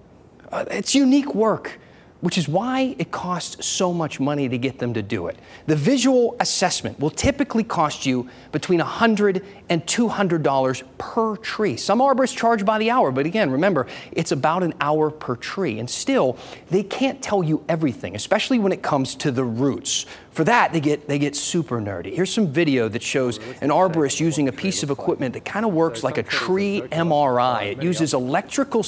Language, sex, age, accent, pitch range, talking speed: English, male, 30-49, American, 135-200 Hz, 195 wpm